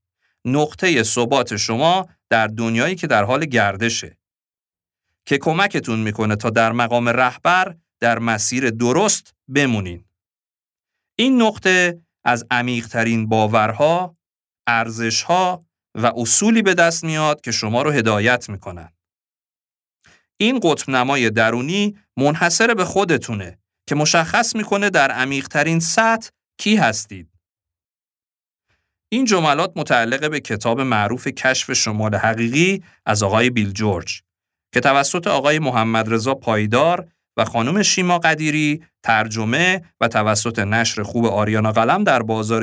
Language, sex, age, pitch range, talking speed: Persian, male, 40-59, 110-165 Hz, 120 wpm